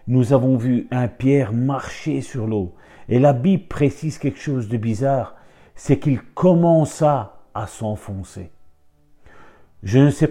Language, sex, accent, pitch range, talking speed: French, male, French, 95-120 Hz, 140 wpm